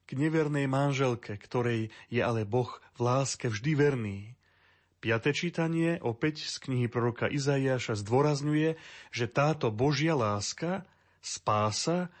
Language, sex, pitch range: Slovak, male, 115-140 Hz